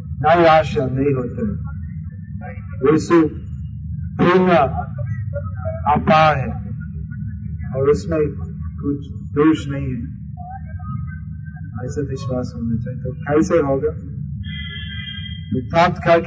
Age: 50-69